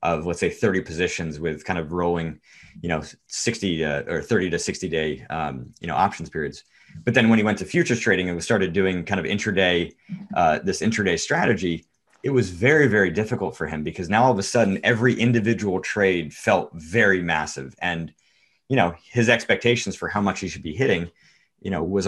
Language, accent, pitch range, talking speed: English, American, 90-120 Hz, 205 wpm